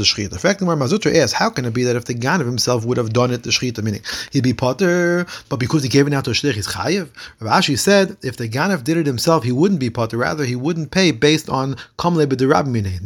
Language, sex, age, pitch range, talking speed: English, male, 30-49, 115-145 Hz, 260 wpm